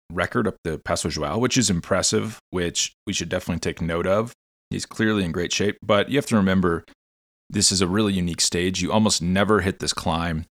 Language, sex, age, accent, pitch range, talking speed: English, male, 30-49, American, 75-105 Hz, 210 wpm